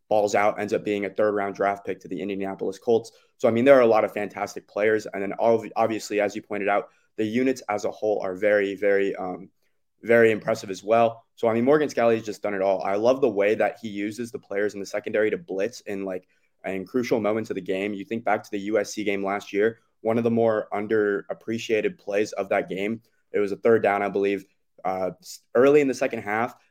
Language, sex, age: English, male, 20-39